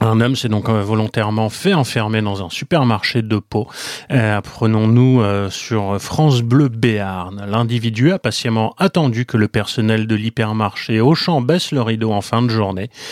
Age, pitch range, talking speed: 30-49, 110-135 Hz, 155 wpm